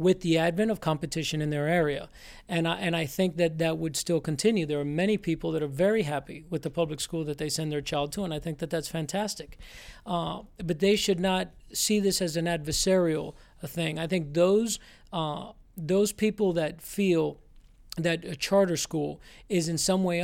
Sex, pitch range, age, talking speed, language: male, 160-185 Hz, 40-59, 205 wpm, English